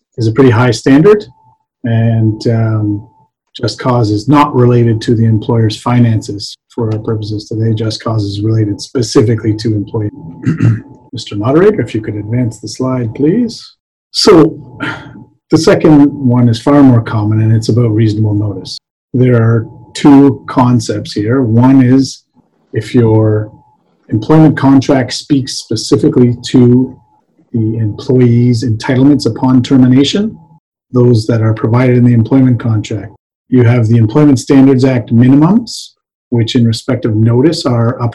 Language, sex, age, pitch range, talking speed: English, male, 40-59, 110-135 Hz, 140 wpm